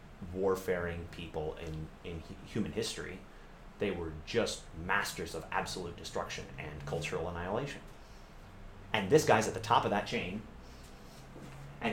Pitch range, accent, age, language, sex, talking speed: 85-115 Hz, American, 30-49, English, male, 130 wpm